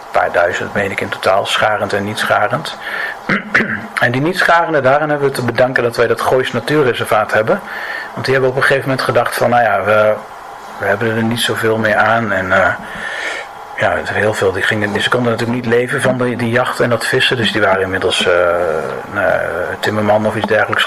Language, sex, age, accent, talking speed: Dutch, male, 50-69, Dutch, 215 wpm